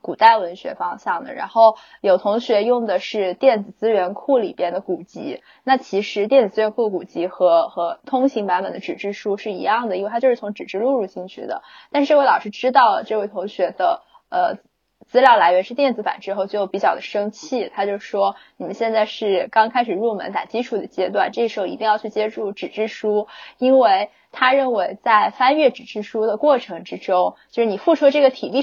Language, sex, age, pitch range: Chinese, female, 10-29, 195-255 Hz